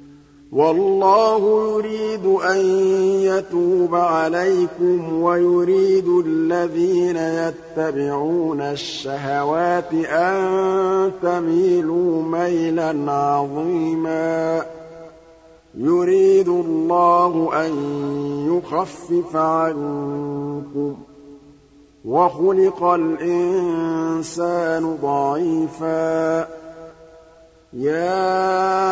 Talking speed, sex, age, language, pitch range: 45 wpm, male, 50-69, Arabic, 160-175 Hz